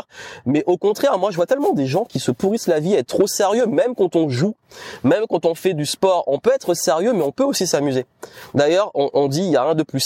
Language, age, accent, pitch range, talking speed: French, 20-39, French, 135-185 Hz, 280 wpm